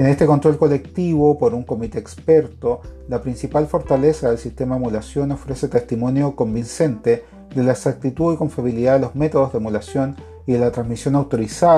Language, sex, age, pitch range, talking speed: Spanish, male, 40-59, 110-145 Hz, 170 wpm